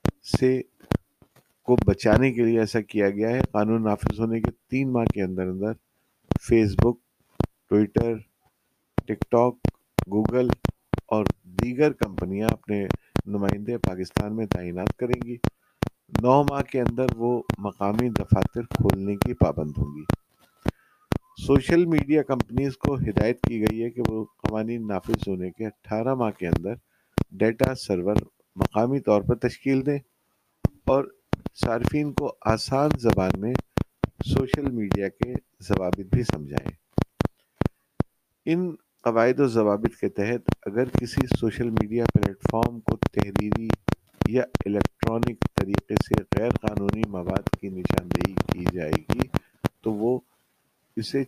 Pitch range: 105-130 Hz